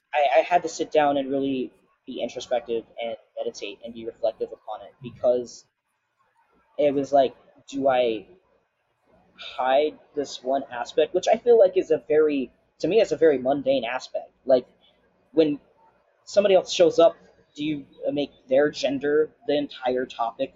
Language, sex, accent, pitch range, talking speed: English, male, American, 125-185 Hz, 160 wpm